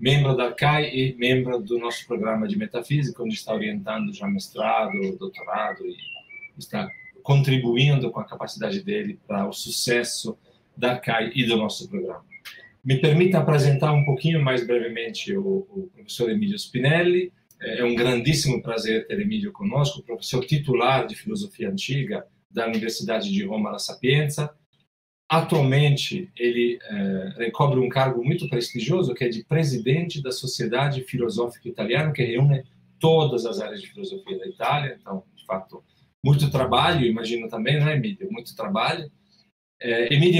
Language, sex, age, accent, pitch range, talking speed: Portuguese, male, 40-59, Brazilian, 125-175 Hz, 150 wpm